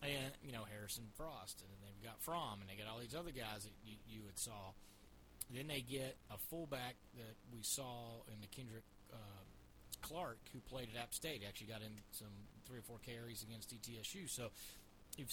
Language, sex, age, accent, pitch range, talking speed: English, male, 30-49, American, 105-140 Hz, 205 wpm